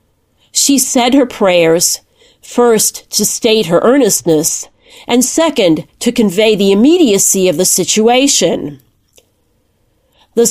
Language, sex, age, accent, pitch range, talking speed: English, female, 40-59, American, 170-250 Hz, 110 wpm